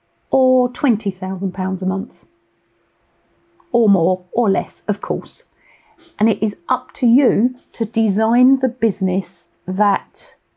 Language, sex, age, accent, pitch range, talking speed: English, female, 40-59, British, 195-235 Hz, 120 wpm